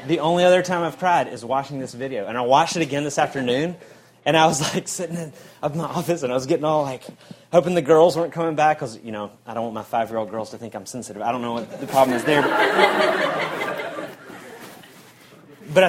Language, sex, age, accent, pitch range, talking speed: English, male, 30-49, American, 110-155 Hz, 225 wpm